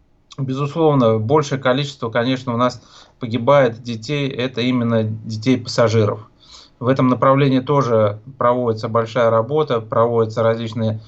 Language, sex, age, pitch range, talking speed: Russian, male, 20-39, 115-135 Hz, 115 wpm